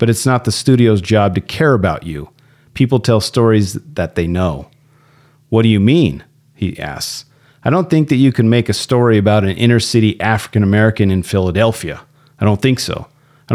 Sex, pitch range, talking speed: male, 105-135 Hz, 190 wpm